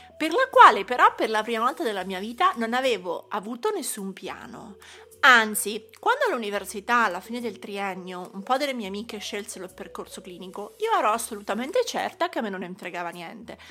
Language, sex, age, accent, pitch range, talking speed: Italian, female, 30-49, native, 195-280 Hz, 185 wpm